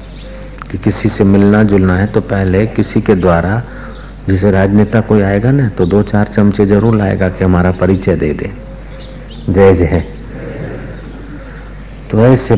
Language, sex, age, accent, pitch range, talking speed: Hindi, male, 60-79, native, 95-110 Hz, 155 wpm